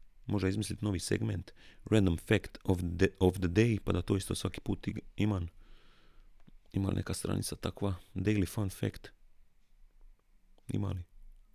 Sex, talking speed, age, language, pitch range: male, 135 wpm, 30-49, Croatian, 90-105 Hz